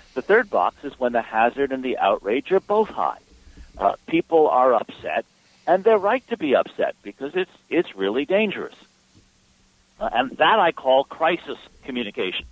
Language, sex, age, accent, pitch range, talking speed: English, male, 60-79, American, 115-170 Hz, 170 wpm